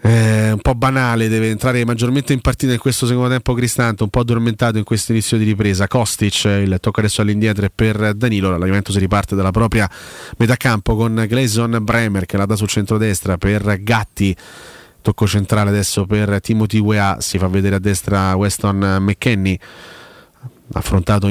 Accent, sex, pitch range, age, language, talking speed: native, male, 100-115 Hz, 30-49, Italian, 170 wpm